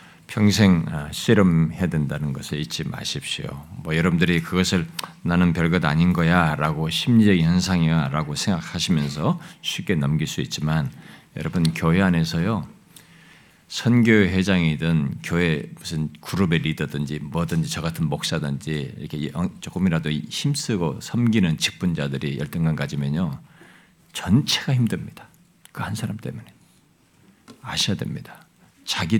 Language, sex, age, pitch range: Korean, male, 50-69, 80-110 Hz